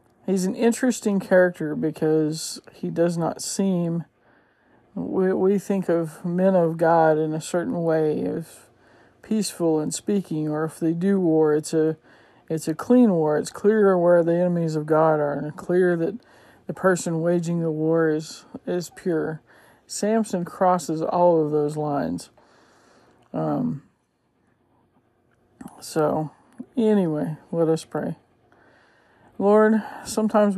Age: 50-69